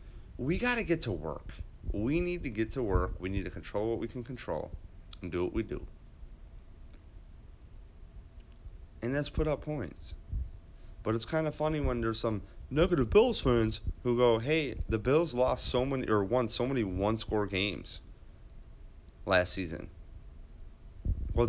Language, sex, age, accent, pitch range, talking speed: English, male, 30-49, American, 85-115 Hz, 165 wpm